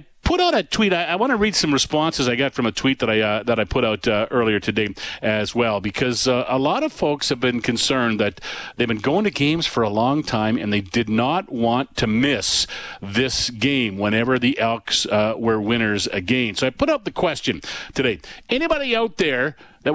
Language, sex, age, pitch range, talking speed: English, male, 40-59, 115-150 Hz, 225 wpm